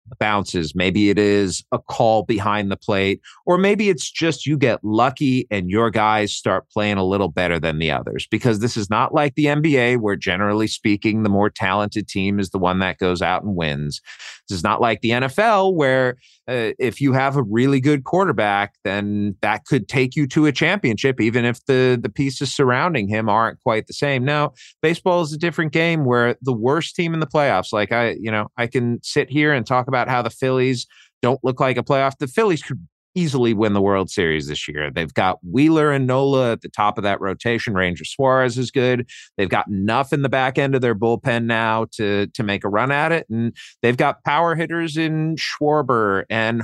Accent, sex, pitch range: American, male, 105-140 Hz